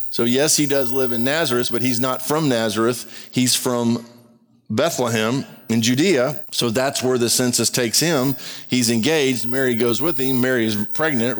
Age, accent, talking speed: 50-69, American, 175 wpm